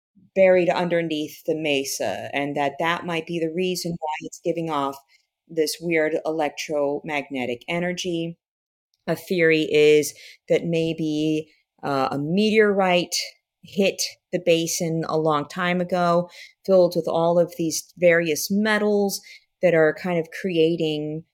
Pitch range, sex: 150-185 Hz, female